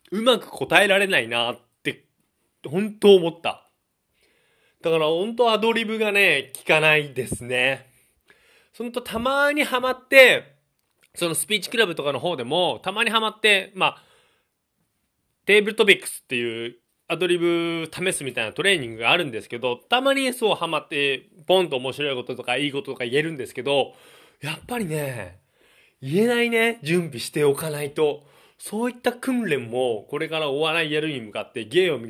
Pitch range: 135-225 Hz